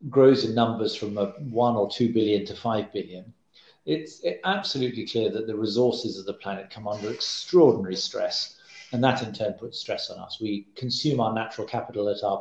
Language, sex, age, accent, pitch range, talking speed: English, male, 40-59, British, 110-155 Hz, 195 wpm